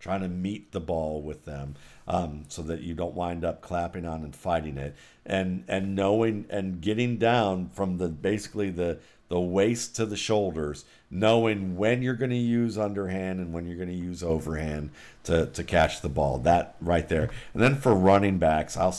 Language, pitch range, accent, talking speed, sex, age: English, 85-105 Hz, American, 195 wpm, male, 50-69